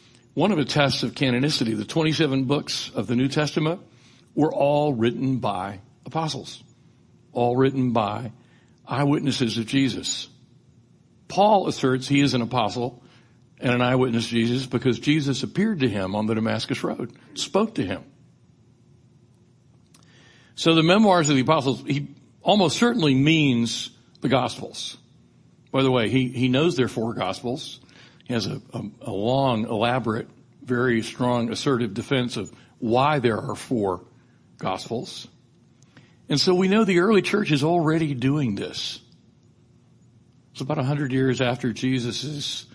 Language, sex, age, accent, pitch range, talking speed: English, male, 60-79, American, 120-150 Hz, 145 wpm